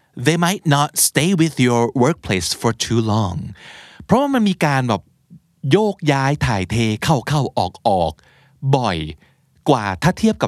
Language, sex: Thai, male